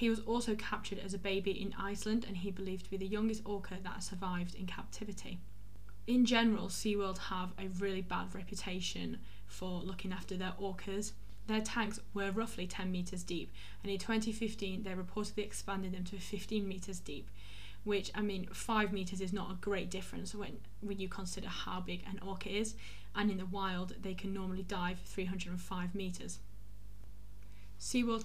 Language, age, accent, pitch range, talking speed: English, 10-29, British, 180-200 Hz, 175 wpm